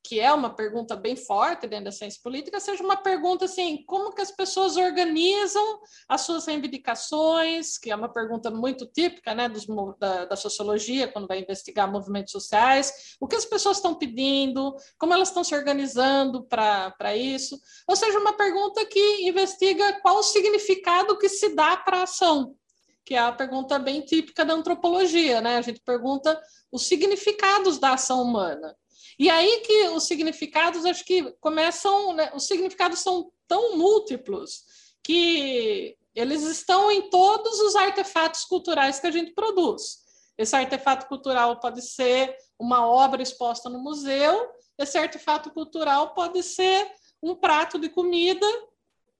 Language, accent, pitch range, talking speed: Portuguese, Brazilian, 265-380 Hz, 155 wpm